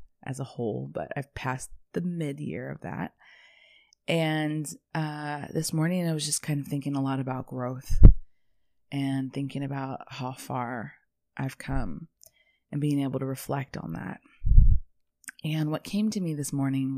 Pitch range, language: 130-155 Hz, English